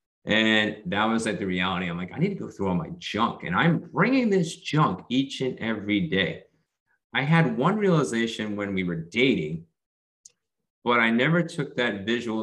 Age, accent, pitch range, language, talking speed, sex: 30-49, American, 95-135 Hz, English, 190 wpm, male